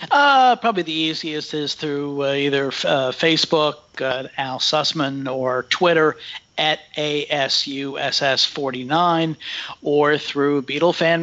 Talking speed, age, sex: 105 wpm, 50-69, male